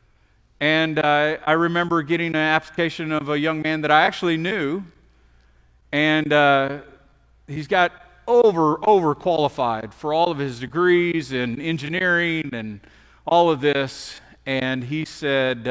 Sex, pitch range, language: male, 130-170 Hz, English